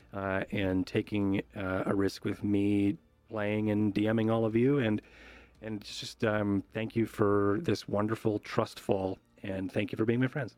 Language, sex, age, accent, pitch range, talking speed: English, male, 40-59, American, 100-120 Hz, 180 wpm